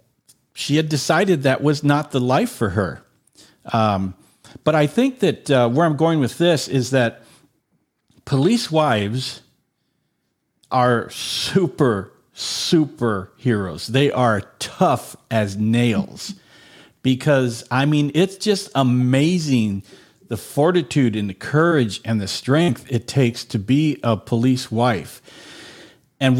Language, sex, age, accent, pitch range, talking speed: English, male, 50-69, American, 115-150 Hz, 125 wpm